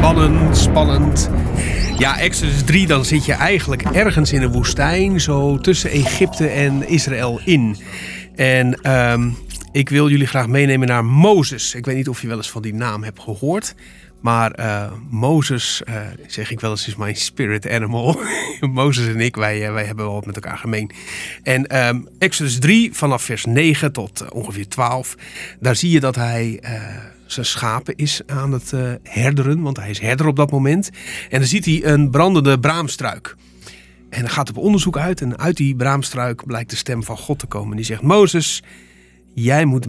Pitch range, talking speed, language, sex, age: 110-145 Hz, 185 wpm, Dutch, male, 40-59